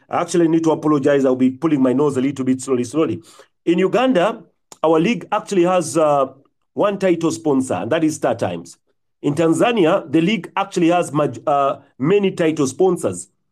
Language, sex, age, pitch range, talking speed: English, male, 40-59, 150-195 Hz, 180 wpm